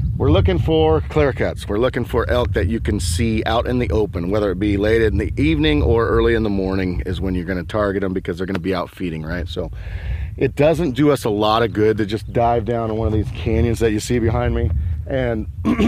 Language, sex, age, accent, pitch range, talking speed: English, male, 40-59, American, 95-120 Hz, 255 wpm